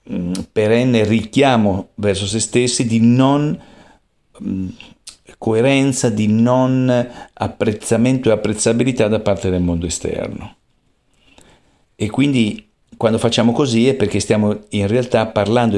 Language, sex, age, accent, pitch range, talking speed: Italian, male, 50-69, native, 100-125 Hz, 110 wpm